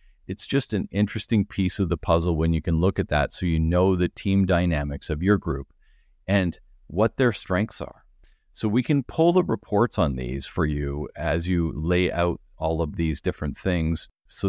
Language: English